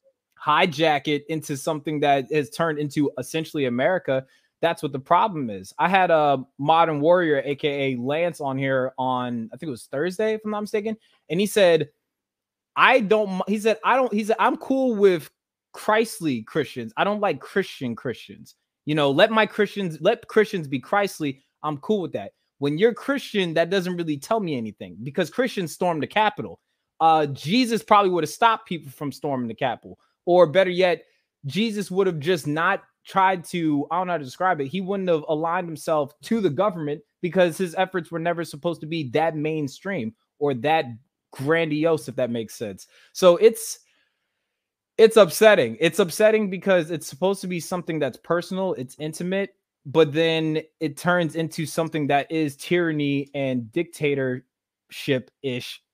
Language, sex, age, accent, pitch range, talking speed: English, male, 20-39, American, 145-195 Hz, 175 wpm